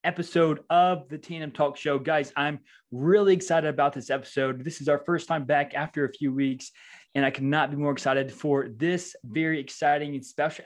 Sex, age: male, 20-39